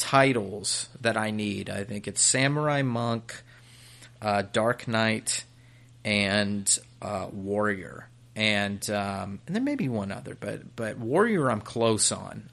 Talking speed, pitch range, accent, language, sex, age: 140 wpm, 105-125 Hz, American, English, male, 30-49